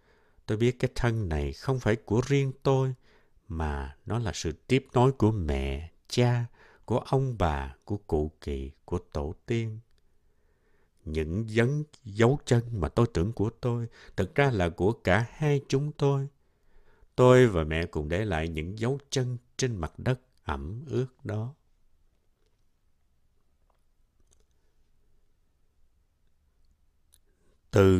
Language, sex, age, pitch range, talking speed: Vietnamese, male, 60-79, 80-125 Hz, 130 wpm